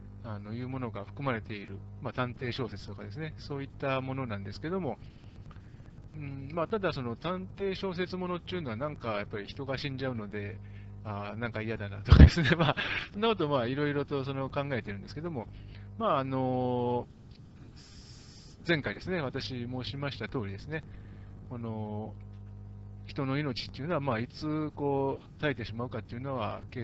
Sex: male